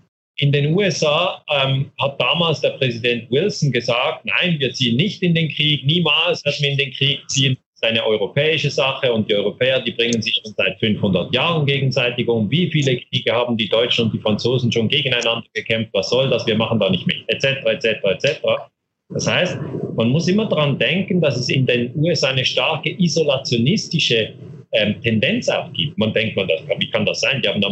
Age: 40-59